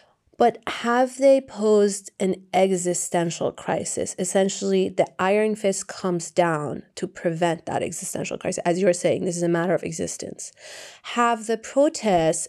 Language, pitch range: English, 170-200 Hz